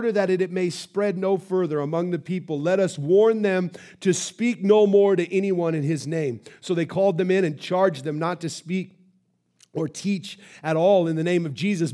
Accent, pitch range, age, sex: American, 160-200 Hz, 30-49, male